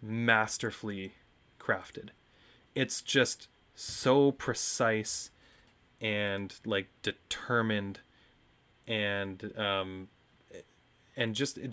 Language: English